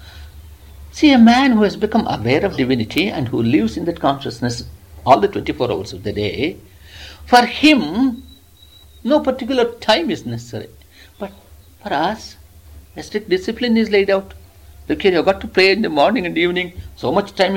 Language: English